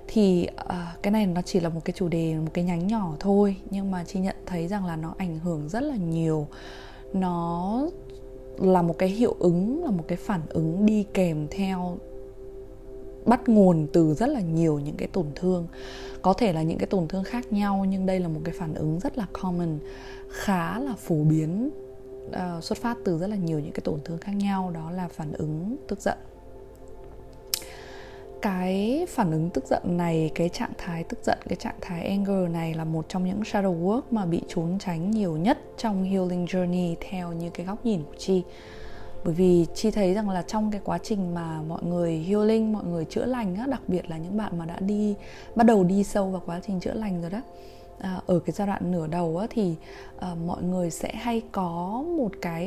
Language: Vietnamese